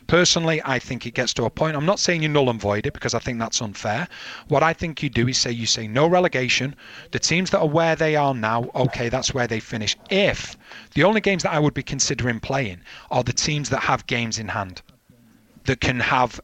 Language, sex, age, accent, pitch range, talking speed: English, male, 30-49, British, 120-150 Hz, 240 wpm